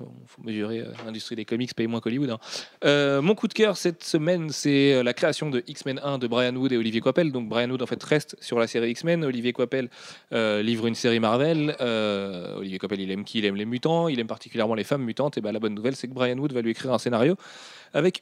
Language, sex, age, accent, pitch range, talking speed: French, male, 30-49, French, 115-145 Hz, 255 wpm